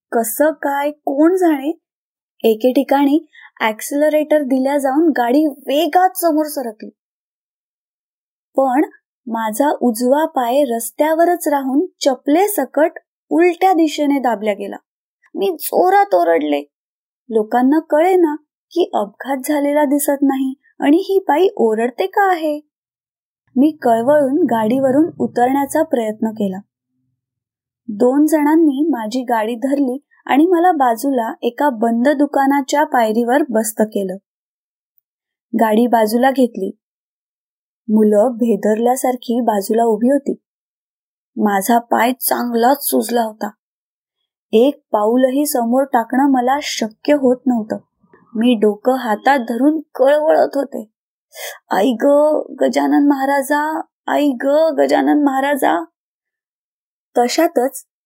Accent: native